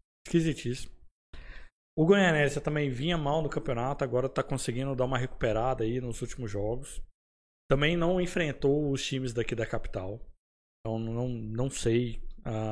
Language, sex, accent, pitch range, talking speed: Portuguese, male, Brazilian, 120-170 Hz, 145 wpm